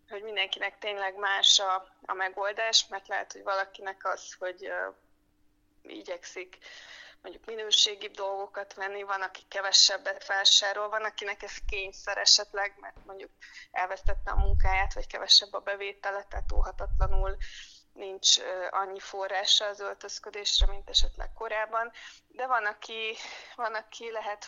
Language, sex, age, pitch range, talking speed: Hungarian, female, 20-39, 195-220 Hz, 130 wpm